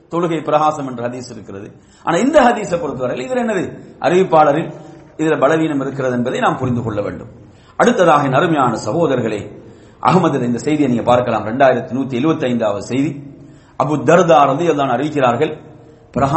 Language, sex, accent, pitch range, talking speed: English, male, Indian, 125-190 Hz, 135 wpm